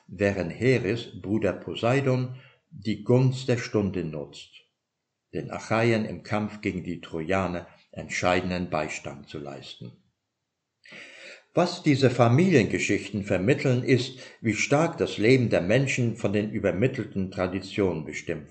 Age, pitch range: 60-79, 95-120 Hz